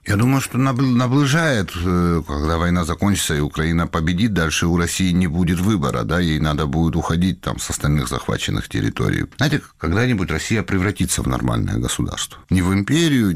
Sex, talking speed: male, 160 wpm